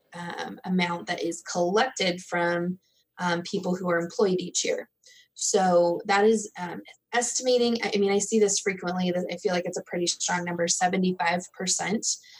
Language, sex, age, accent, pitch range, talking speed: English, female, 20-39, American, 175-205 Hz, 165 wpm